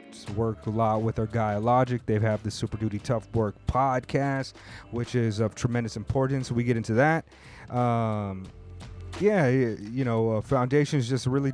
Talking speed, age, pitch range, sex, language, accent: 170 wpm, 30-49, 110-125 Hz, male, English, American